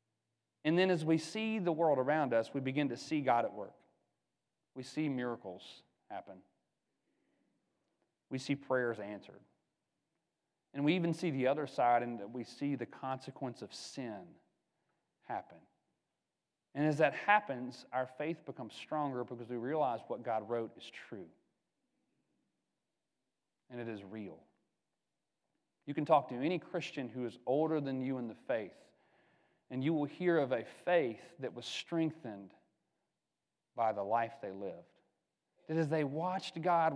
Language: English